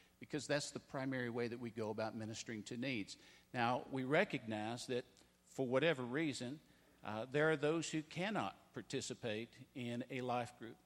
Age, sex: 50-69, male